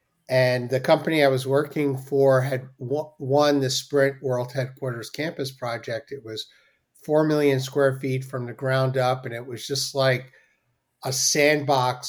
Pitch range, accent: 125-140 Hz, American